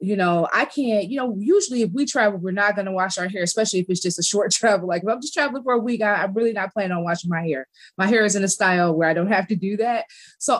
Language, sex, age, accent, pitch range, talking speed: English, female, 20-39, American, 175-225 Hz, 305 wpm